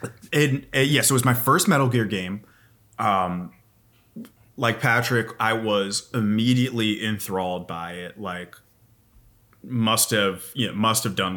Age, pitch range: 30-49, 105-130 Hz